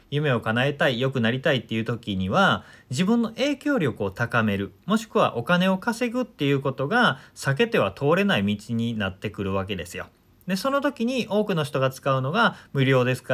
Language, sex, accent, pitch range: Japanese, male, native, 105-165 Hz